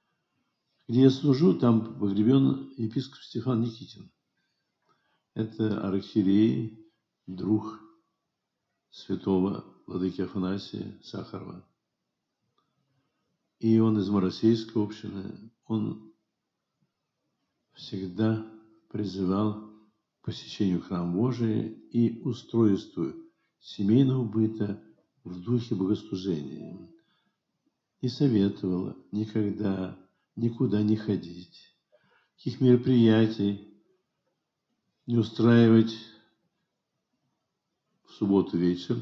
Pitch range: 95-115 Hz